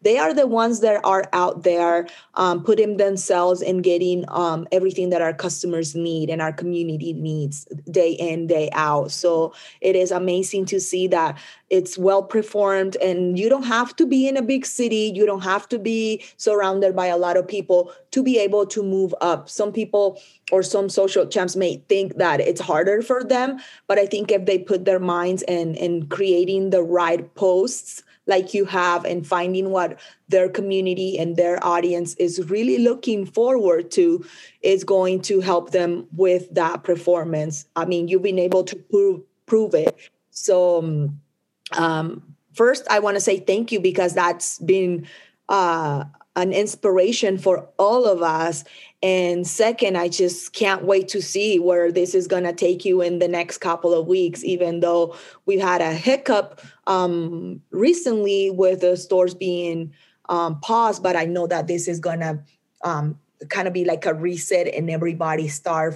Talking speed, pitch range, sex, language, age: 175 wpm, 170-195 Hz, female, English, 20-39